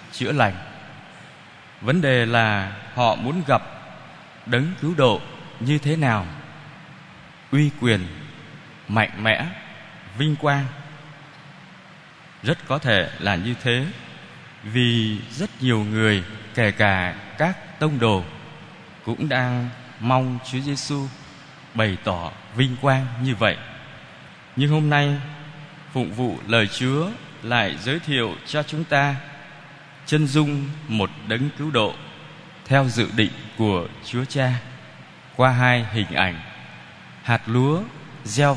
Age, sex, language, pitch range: 20-39, male, Vietnamese, 110-150 Hz